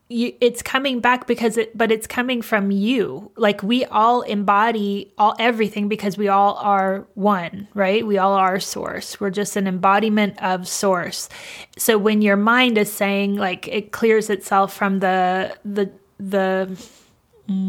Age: 20-39